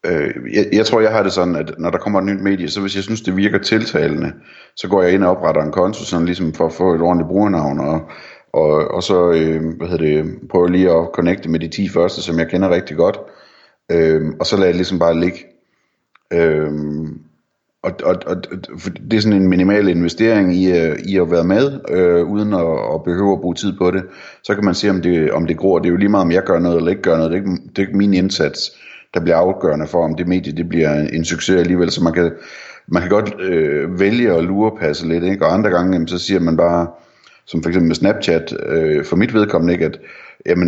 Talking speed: 245 wpm